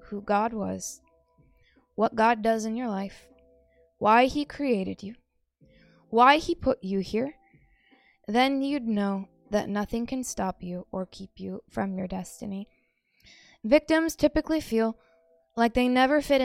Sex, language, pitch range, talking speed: female, English, 205-265 Hz, 140 wpm